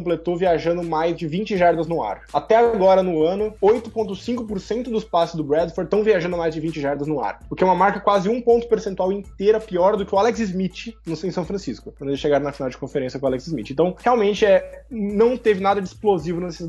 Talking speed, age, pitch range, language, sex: 230 wpm, 20-39, 170-215 Hz, Portuguese, male